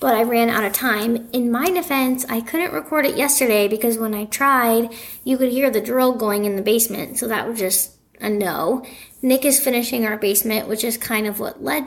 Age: 10-29